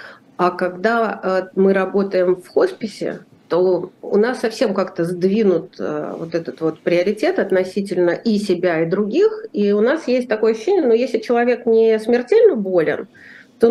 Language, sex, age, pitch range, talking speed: Russian, female, 40-59, 180-245 Hz, 155 wpm